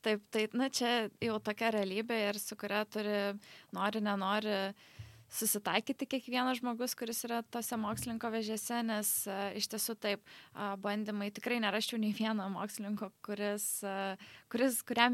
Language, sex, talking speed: English, female, 135 wpm